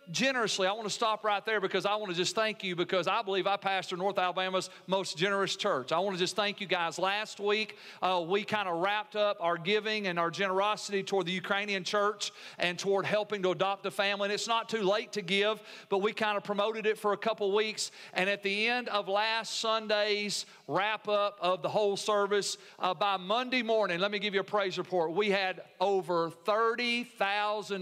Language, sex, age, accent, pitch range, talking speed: English, male, 40-59, American, 190-220 Hz, 215 wpm